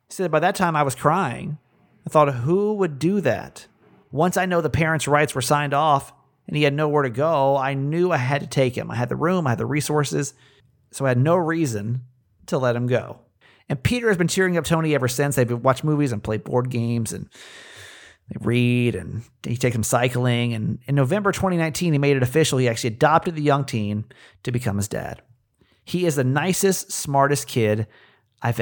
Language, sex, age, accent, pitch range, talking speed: English, male, 40-59, American, 115-150 Hz, 215 wpm